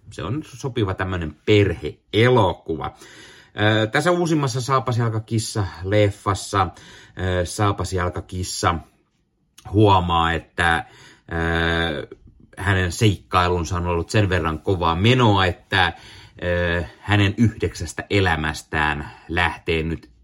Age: 30-49